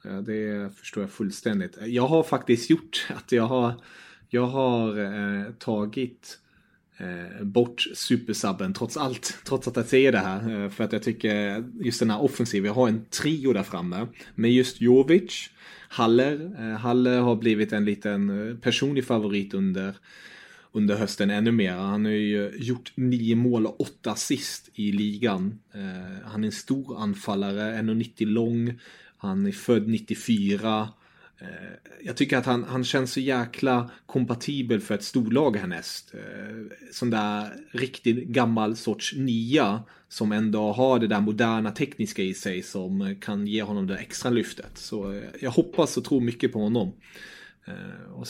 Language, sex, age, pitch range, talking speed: English, male, 30-49, 105-125 Hz, 160 wpm